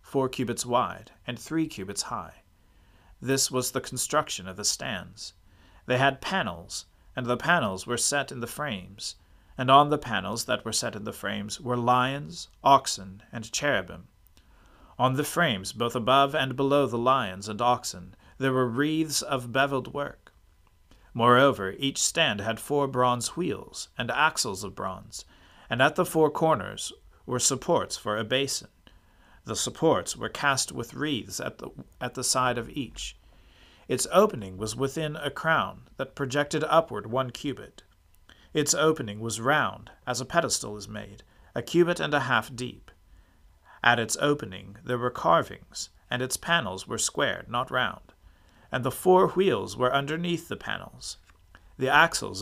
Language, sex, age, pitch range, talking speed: English, male, 40-59, 95-140 Hz, 160 wpm